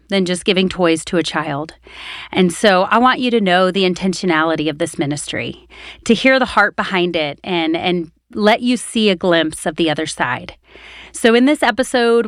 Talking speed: 195 wpm